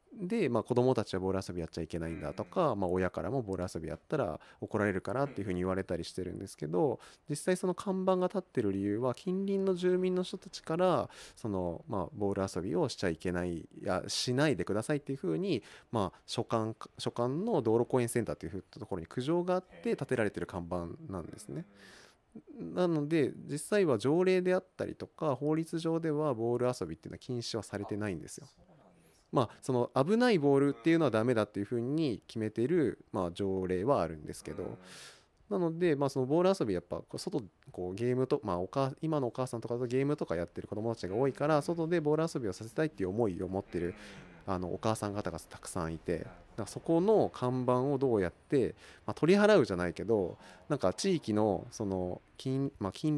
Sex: male